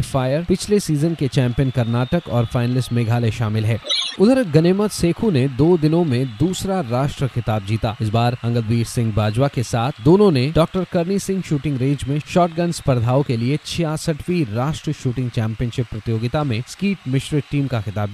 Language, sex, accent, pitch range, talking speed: Hindi, male, native, 120-160 Hz, 175 wpm